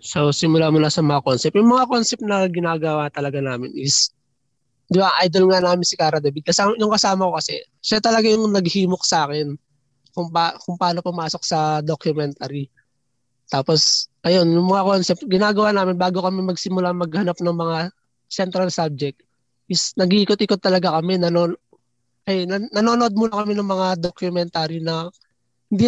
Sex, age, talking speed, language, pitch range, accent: male, 20-39, 165 wpm, Filipino, 155-195 Hz, native